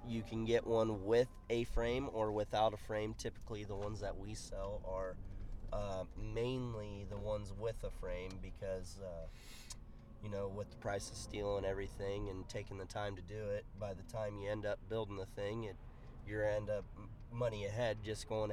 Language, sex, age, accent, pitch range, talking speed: English, male, 30-49, American, 95-115 Hz, 195 wpm